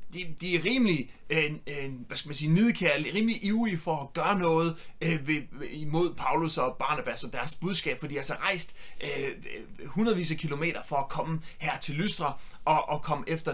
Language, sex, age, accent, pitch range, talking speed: Danish, male, 30-49, native, 155-195 Hz, 160 wpm